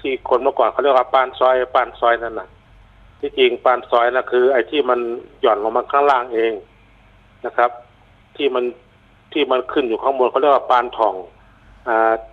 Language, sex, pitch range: Thai, male, 115-140 Hz